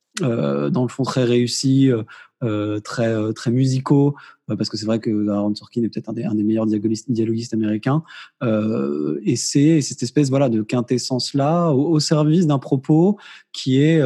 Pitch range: 115-150 Hz